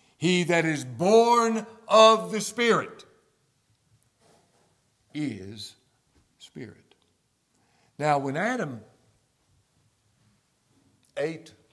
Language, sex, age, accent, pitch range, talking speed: English, male, 60-79, American, 120-160 Hz, 65 wpm